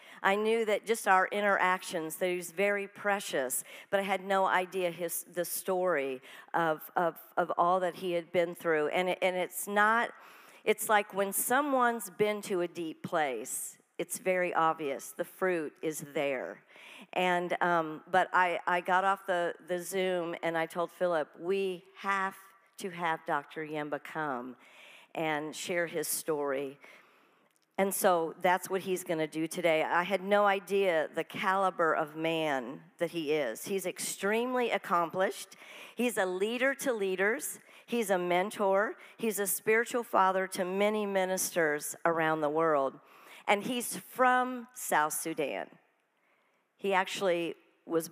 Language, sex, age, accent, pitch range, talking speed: English, female, 50-69, American, 170-205 Hz, 155 wpm